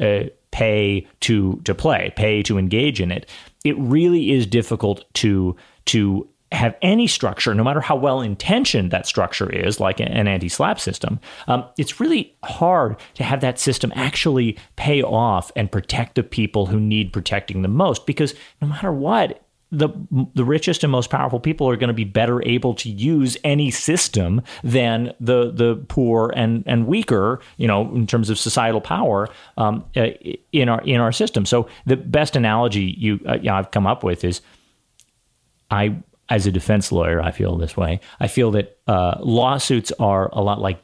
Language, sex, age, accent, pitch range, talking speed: English, male, 30-49, American, 100-135 Hz, 180 wpm